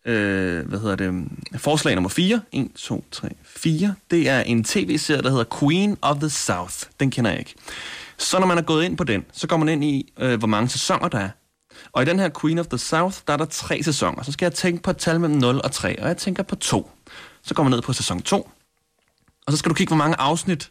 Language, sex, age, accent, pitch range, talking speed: Danish, male, 30-49, native, 115-165 Hz, 260 wpm